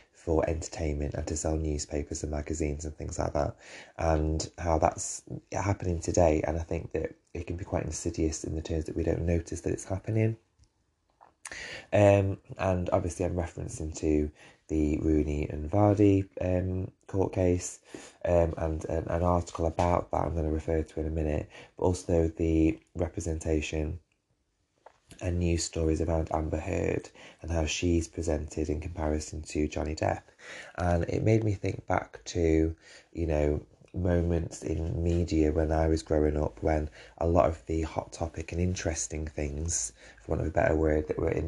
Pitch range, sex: 80-90 Hz, male